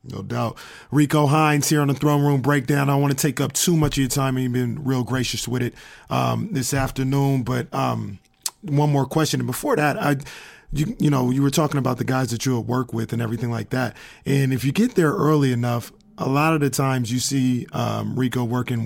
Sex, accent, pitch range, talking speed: male, American, 125-145 Hz, 230 wpm